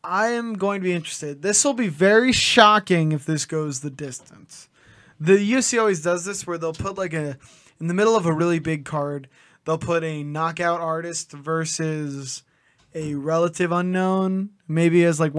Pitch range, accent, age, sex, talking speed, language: 140-170 Hz, American, 20-39, male, 185 wpm, English